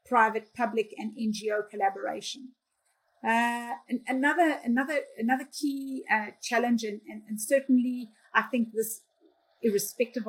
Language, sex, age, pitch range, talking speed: English, female, 40-59, 205-240 Hz, 120 wpm